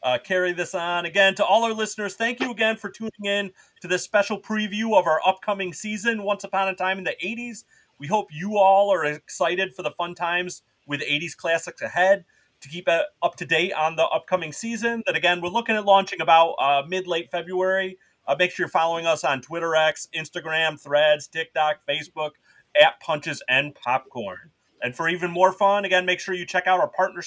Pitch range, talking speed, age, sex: 160-200 Hz, 205 wpm, 30-49, male